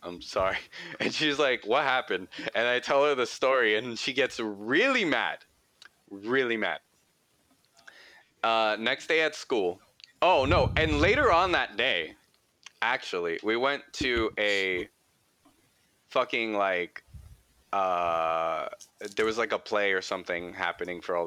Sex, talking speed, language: male, 140 wpm, English